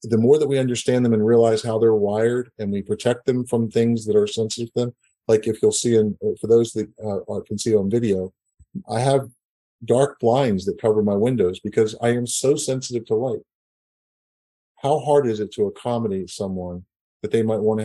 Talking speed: 205 wpm